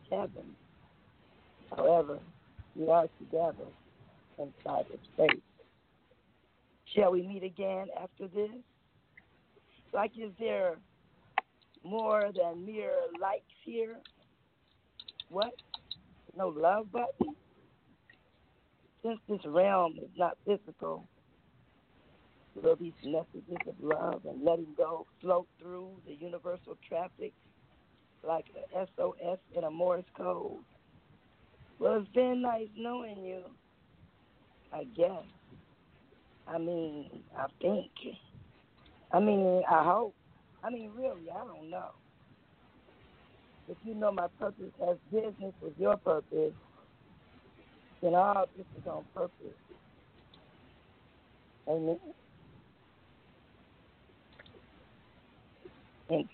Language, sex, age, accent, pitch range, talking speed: English, female, 50-69, American, 170-220 Hz, 100 wpm